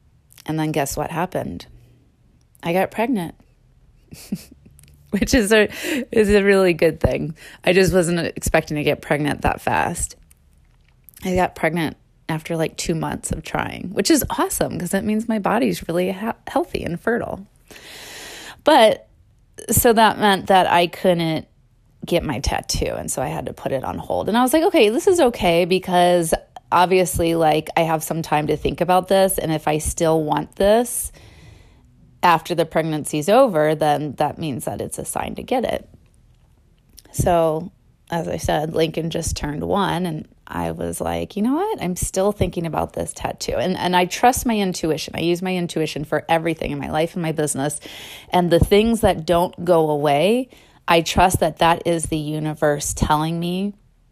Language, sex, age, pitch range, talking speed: English, female, 20-39, 155-195 Hz, 175 wpm